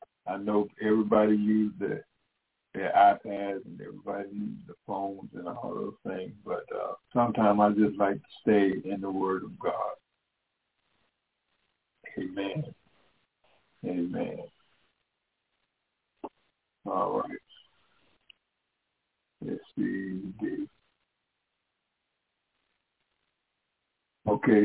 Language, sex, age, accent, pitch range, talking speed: English, male, 60-79, American, 105-130 Hz, 90 wpm